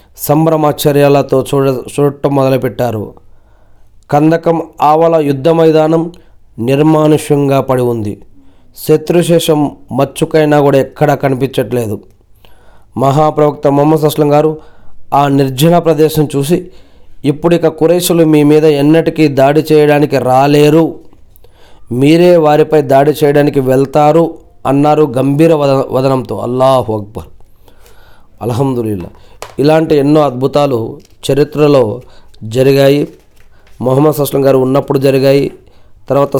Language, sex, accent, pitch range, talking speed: Telugu, male, native, 125-150 Hz, 90 wpm